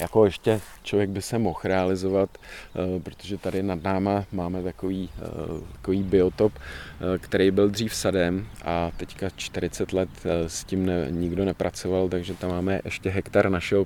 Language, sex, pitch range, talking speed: Czech, male, 85-95 Hz, 145 wpm